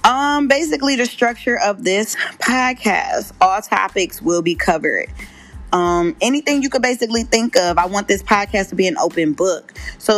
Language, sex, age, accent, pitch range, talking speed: English, female, 20-39, American, 185-230 Hz, 170 wpm